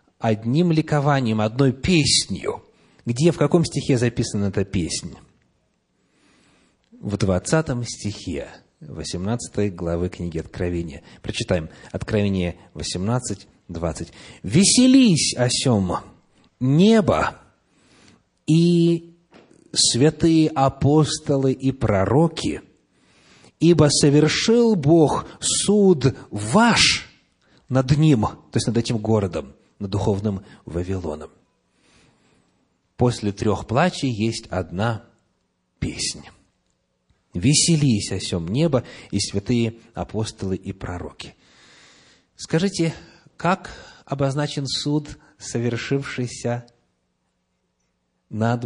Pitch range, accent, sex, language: 95-145 Hz, native, male, Russian